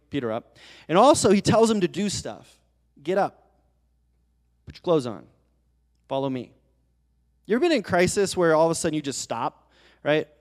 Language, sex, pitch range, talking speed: English, male, 110-150 Hz, 185 wpm